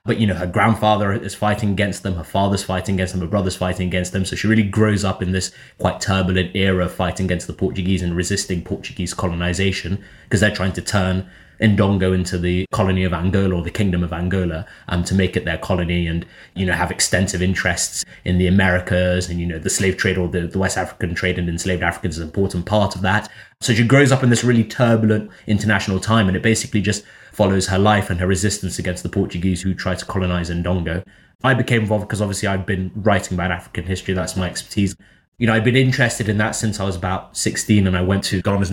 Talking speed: 230 wpm